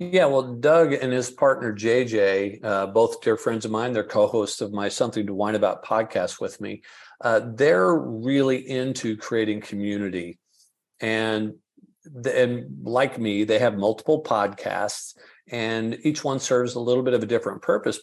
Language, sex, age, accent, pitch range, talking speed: English, male, 50-69, American, 105-130 Hz, 165 wpm